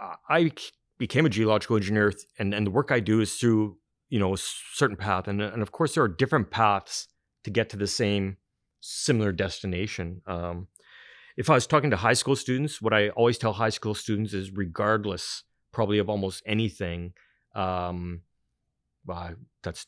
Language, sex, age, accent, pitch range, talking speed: English, male, 30-49, American, 95-115 Hz, 180 wpm